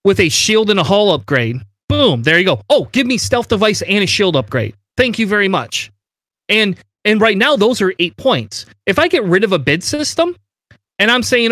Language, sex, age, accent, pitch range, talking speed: English, male, 30-49, American, 150-215 Hz, 225 wpm